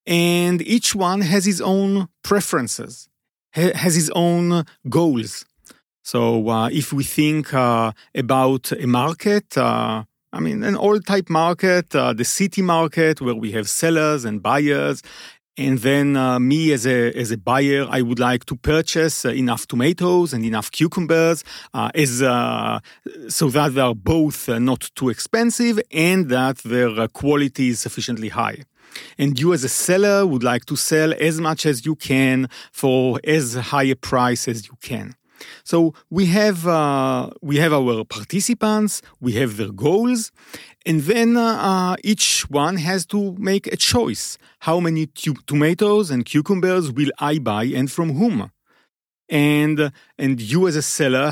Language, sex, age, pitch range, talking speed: English, male, 40-59, 125-175 Hz, 160 wpm